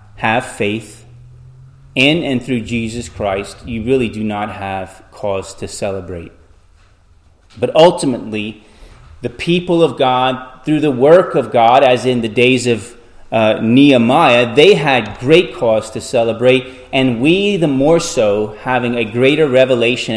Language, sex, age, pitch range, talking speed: English, male, 30-49, 100-130 Hz, 145 wpm